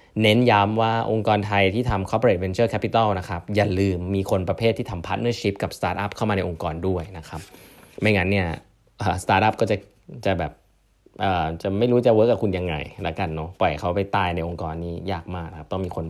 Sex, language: male, Thai